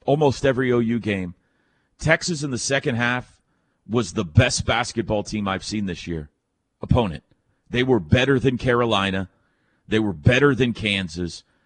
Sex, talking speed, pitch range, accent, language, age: male, 150 wpm, 100-135 Hz, American, English, 40-59